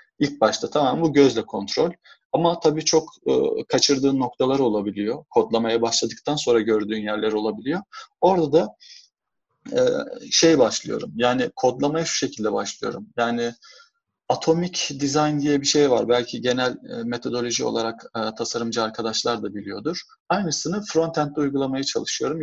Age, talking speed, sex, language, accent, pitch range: 40-59, 135 wpm, male, Turkish, native, 120-150 Hz